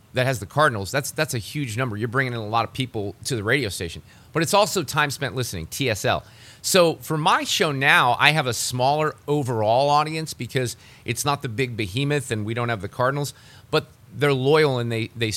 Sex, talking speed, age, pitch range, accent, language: male, 220 wpm, 30-49, 115-145 Hz, American, English